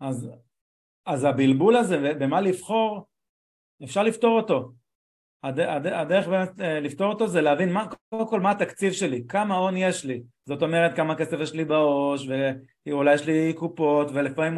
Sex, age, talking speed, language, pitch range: male, 30-49, 160 wpm, Hebrew, 135-180 Hz